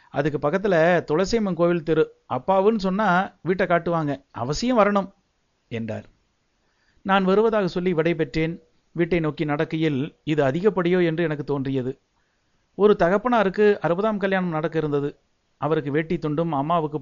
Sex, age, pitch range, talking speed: male, 60-79, 140-185 Hz, 115 wpm